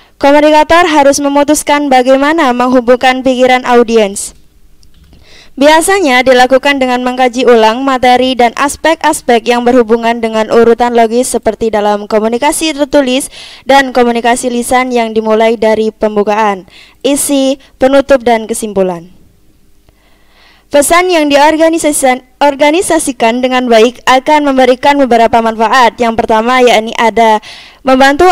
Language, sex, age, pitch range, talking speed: Indonesian, female, 20-39, 230-280 Hz, 105 wpm